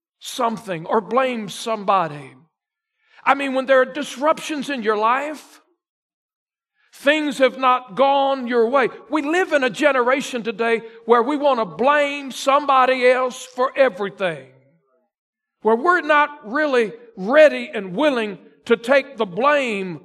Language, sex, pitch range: English, male, 230-295 Hz